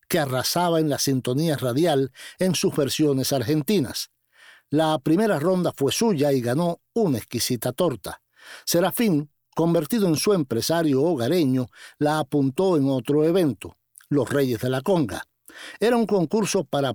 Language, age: Spanish, 60-79